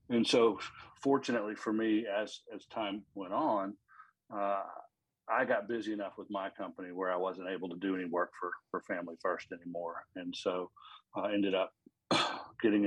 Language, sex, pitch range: English, male, 95-105 Hz